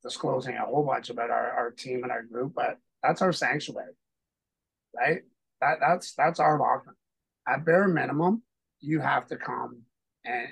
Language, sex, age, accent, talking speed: English, male, 30-49, American, 165 wpm